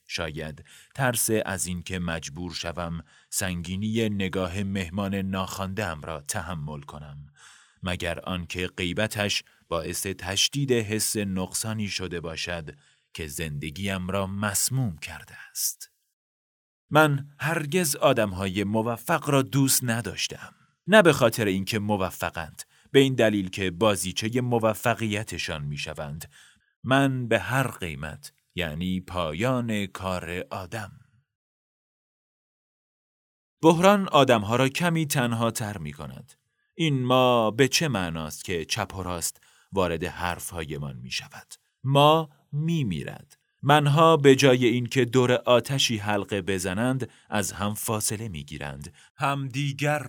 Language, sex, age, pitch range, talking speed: Persian, male, 30-49, 90-125 Hz, 115 wpm